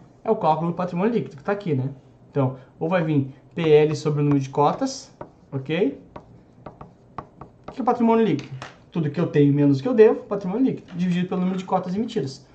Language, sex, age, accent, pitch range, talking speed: Portuguese, male, 20-39, Brazilian, 145-210 Hz, 205 wpm